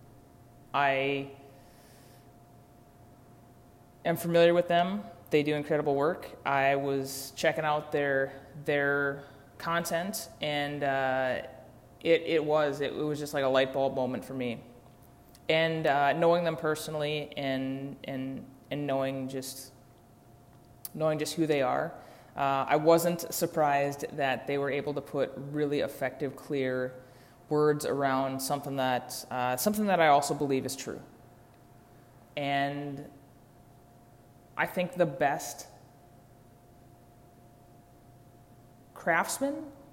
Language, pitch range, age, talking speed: English, 125-150 Hz, 20-39, 115 wpm